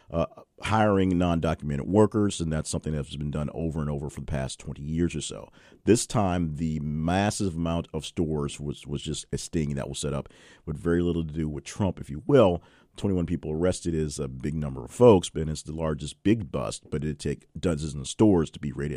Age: 40-59